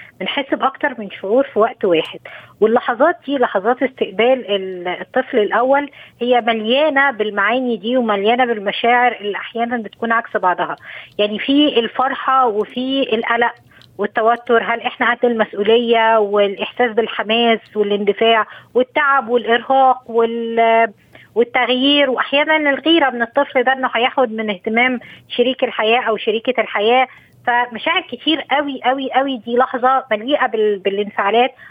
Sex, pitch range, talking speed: female, 220-265 Hz, 120 wpm